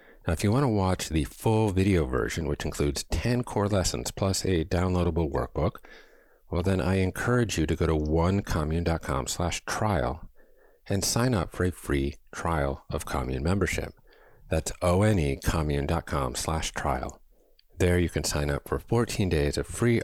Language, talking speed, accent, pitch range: English, 160 wpm, American, 75-100 Hz